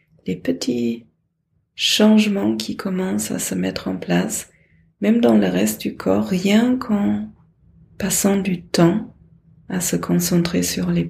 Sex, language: female, French